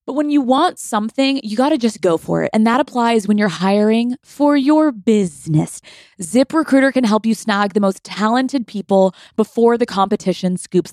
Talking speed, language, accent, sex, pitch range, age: 190 wpm, English, American, female, 190-235 Hz, 20-39